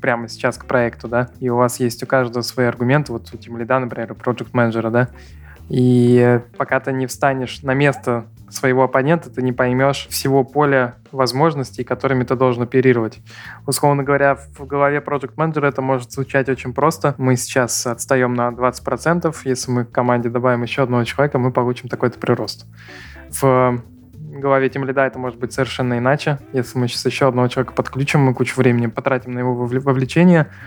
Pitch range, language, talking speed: 120-135 Hz, Russian, 170 wpm